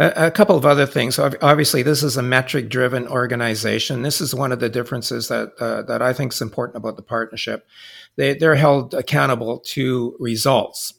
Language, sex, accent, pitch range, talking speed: English, male, American, 115-130 Hz, 180 wpm